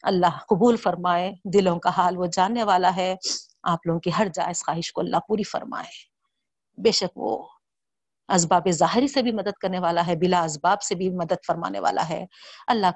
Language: Urdu